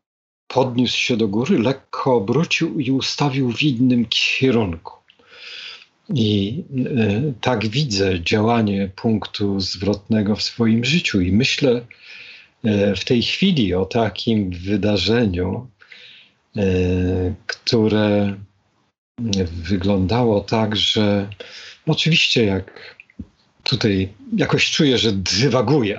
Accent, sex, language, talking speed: native, male, Polish, 90 wpm